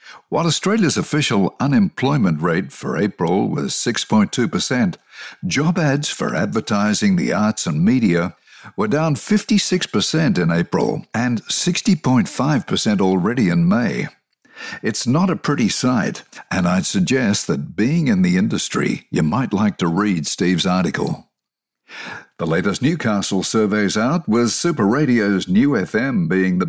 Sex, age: male, 60-79